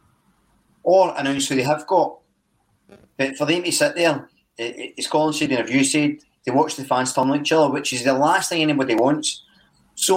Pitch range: 130-165 Hz